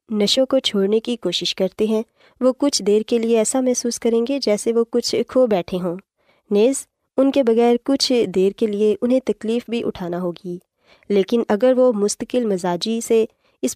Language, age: Urdu, 20-39